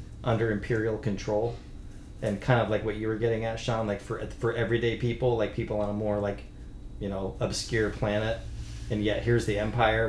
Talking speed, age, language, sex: 195 wpm, 30-49, English, male